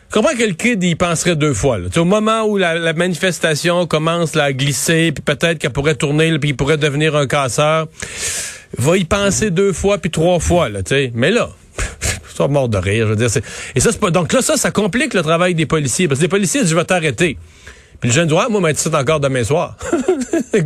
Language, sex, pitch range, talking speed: French, male, 130-180 Hz, 240 wpm